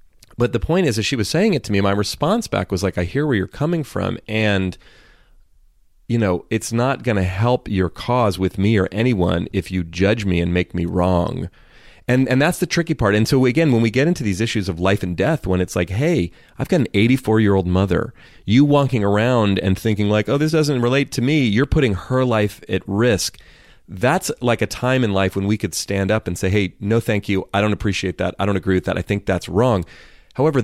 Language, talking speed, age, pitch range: English, 235 wpm, 30-49, 90-115 Hz